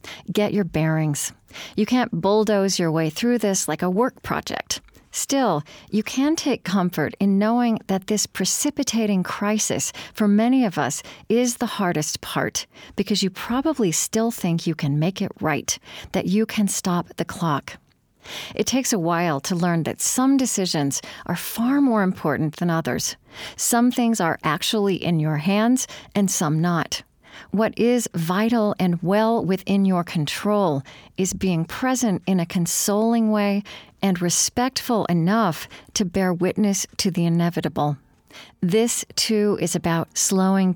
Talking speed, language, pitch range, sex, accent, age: 150 wpm, English, 170-220 Hz, female, American, 40-59